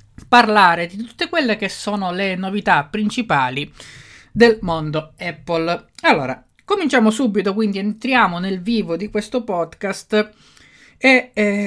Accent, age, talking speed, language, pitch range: native, 20-39, 125 wpm, Italian, 155-220 Hz